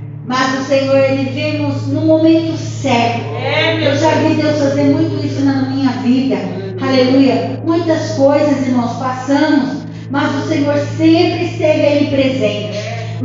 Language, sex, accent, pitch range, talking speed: Portuguese, female, Brazilian, 250-325 Hz, 140 wpm